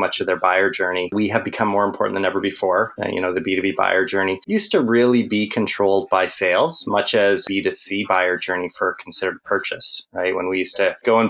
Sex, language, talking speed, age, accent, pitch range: male, English, 225 wpm, 20-39, American, 95-105 Hz